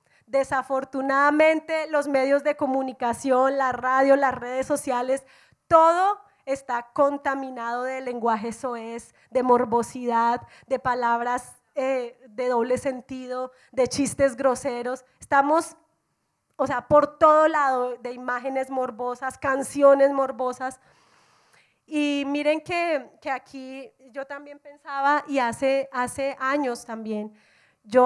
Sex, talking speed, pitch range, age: female, 110 wpm, 250-295 Hz, 30-49